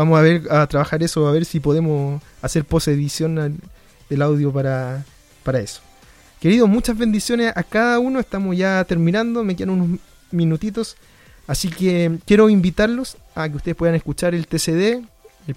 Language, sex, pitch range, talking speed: Spanish, male, 155-200 Hz, 165 wpm